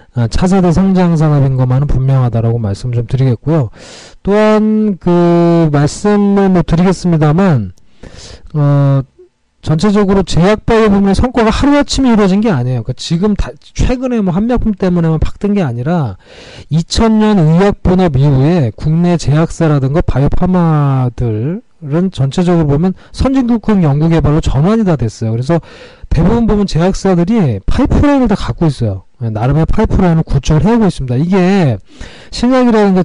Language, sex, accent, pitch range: Korean, male, native, 135-195 Hz